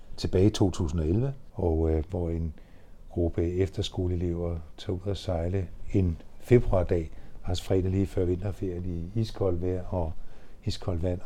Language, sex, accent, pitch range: Danish, male, native, 85-100 Hz